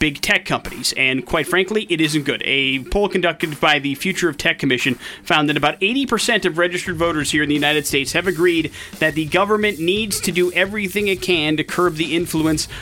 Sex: male